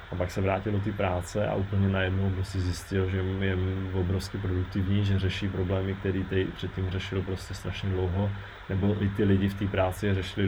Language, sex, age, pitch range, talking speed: Czech, male, 20-39, 95-105 Hz, 195 wpm